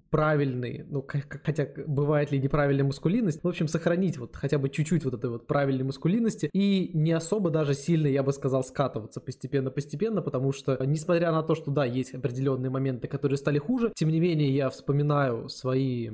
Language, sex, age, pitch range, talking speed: Russian, male, 20-39, 135-155 Hz, 180 wpm